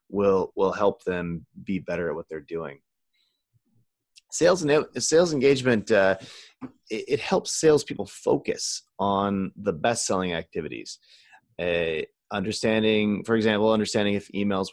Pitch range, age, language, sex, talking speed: 90-115 Hz, 30-49, English, male, 130 wpm